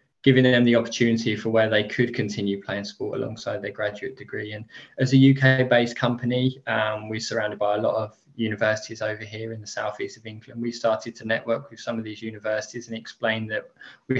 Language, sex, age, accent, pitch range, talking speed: English, male, 20-39, British, 110-125 Hz, 205 wpm